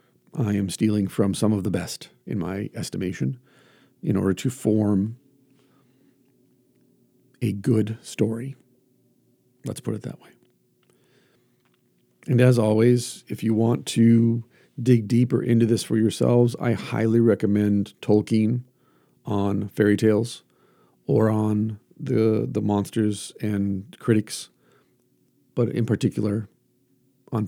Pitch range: 100-125 Hz